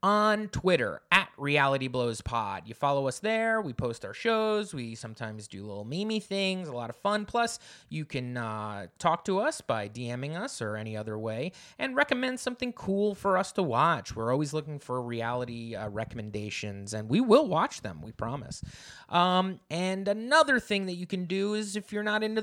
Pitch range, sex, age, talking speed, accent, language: 130-195 Hz, male, 20-39, 190 wpm, American, English